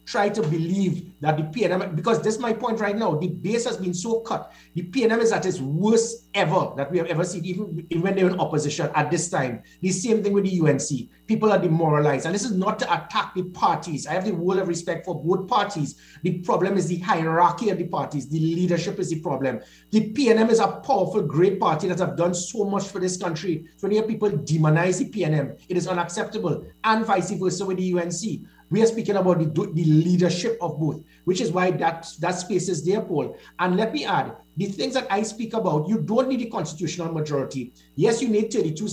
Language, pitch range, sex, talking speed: English, 165-210 Hz, male, 225 wpm